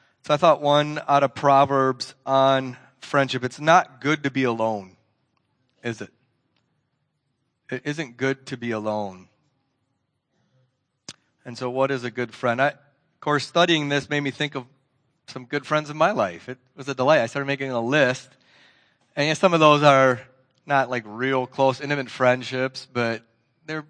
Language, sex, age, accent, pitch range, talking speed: English, male, 30-49, American, 120-140 Hz, 165 wpm